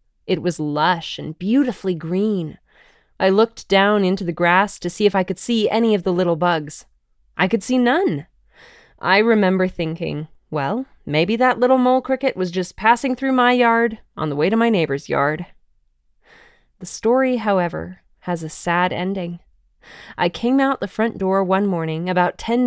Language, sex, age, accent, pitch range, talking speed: English, female, 20-39, American, 170-225 Hz, 175 wpm